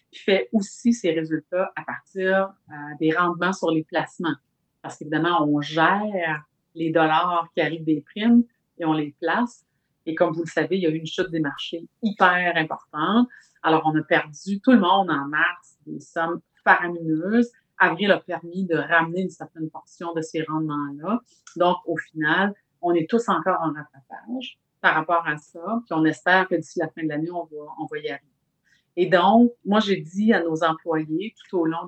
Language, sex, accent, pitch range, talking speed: French, female, Canadian, 155-180 Hz, 195 wpm